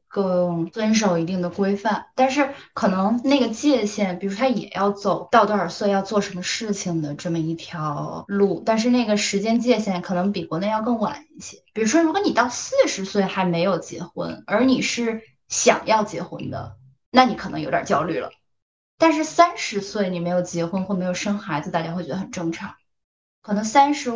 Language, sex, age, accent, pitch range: Chinese, female, 20-39, native, 175-220 Hz